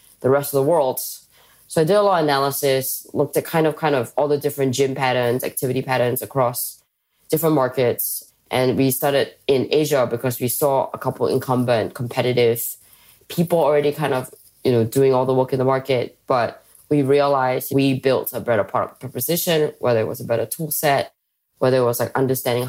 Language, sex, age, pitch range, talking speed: English, female, 10-29, 125-150 Hz, 195 wpm